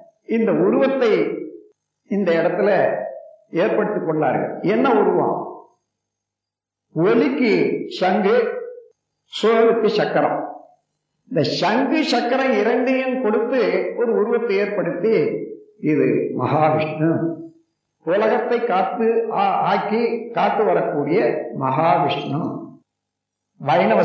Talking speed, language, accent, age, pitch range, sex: 70 wpm, Tamil, native, 50-69, 175-265 Hz, male